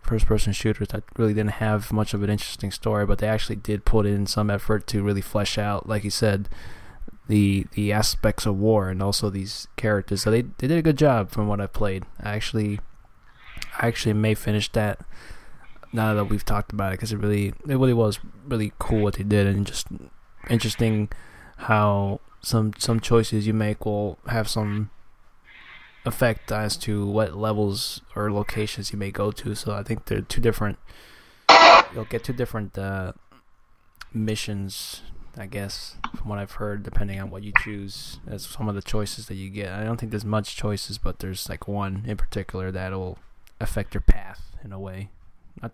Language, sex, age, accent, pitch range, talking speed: English, male, 20-39, American, 100-110 Hz, 190 wpm